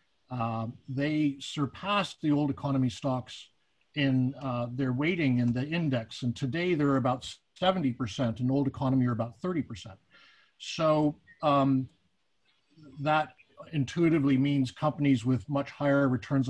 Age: 50-69